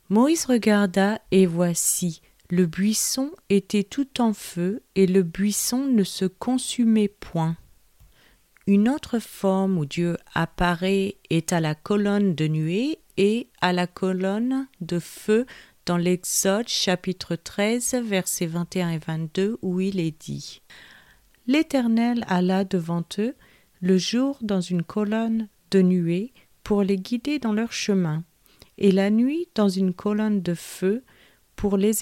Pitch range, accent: 175-220 Hz, French